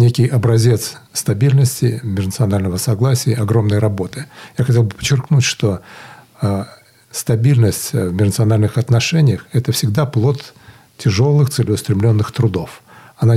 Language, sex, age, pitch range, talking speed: Russian, male, 60-79, 105-130 Hz, 105 wpm